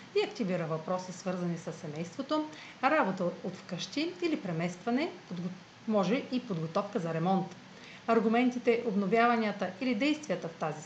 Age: 40-59